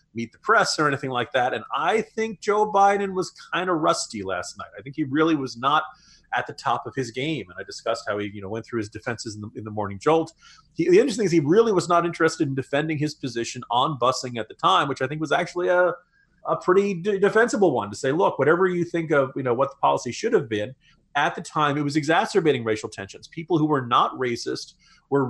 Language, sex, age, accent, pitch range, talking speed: English, male, 30-49, American, 125-160 Hz, 245 wpm